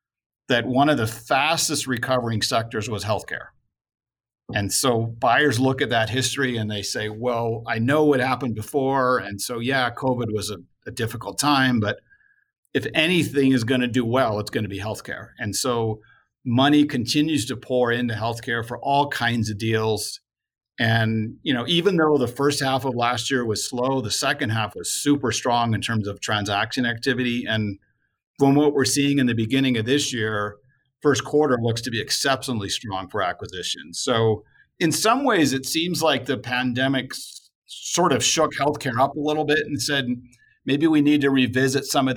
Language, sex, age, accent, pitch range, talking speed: English, male, 50-69, American, 115-140 Hz, 185 wpm